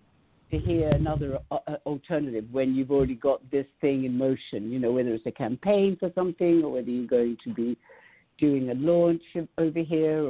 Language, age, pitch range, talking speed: English, 60-79, 125-165 Hz, 180 wpm